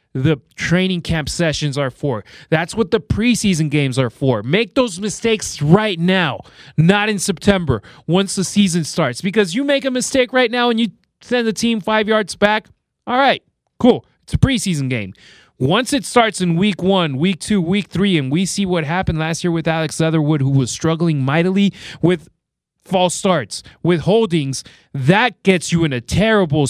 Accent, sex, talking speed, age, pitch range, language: American, male, 185 wpm, 30-49, 155-215 Hz, English